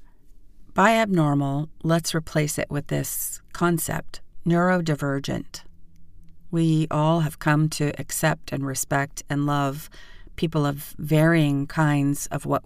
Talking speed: 120 wpm